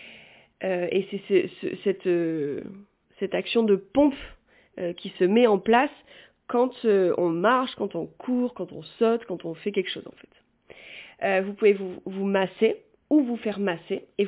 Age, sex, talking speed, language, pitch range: 30-49, female, 175 wpm, French, 190-230 Hz